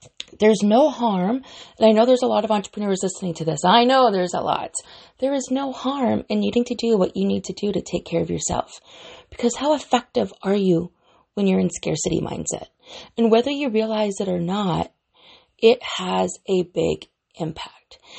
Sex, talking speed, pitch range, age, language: female, 195 wpm, 175-245 Hz, 30-49, English